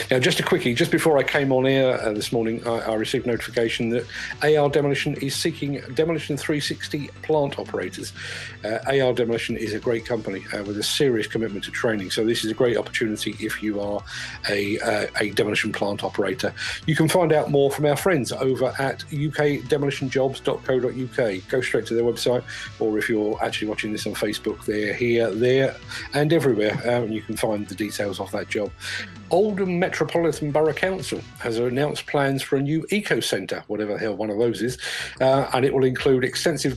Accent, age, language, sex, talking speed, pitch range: British, 40-59, English, male, 195 wpm, 110-145 Hz